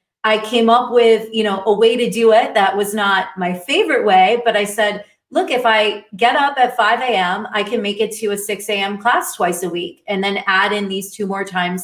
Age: 30-49